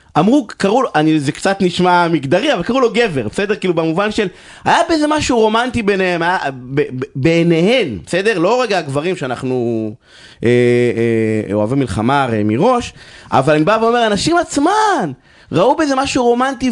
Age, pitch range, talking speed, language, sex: 30-49, 150-220 Hz, 150 wpm, Hebrew, male